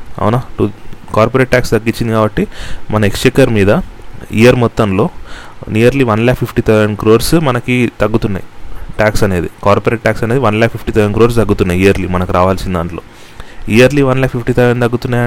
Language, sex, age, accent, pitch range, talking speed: Telugu, male, 30-49, native, 100-115 Hz, 135 wpm